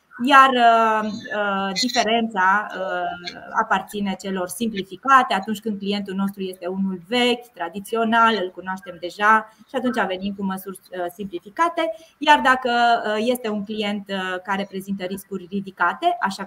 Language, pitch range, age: Romanian, 190-235 Hz, 20-39